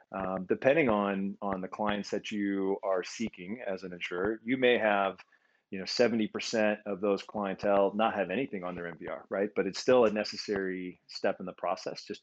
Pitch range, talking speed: 95-110 Hz, 190 wpm